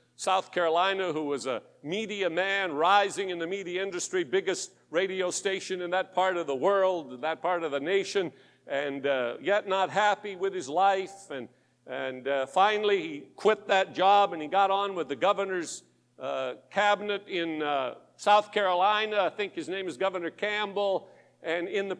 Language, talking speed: English, 175 wpm